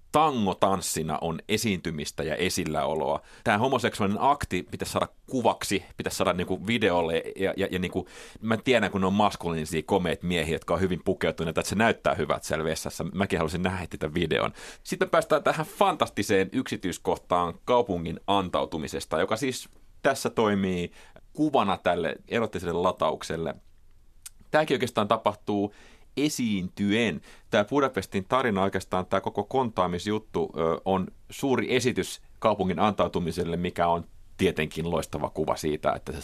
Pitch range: 85-100 Hz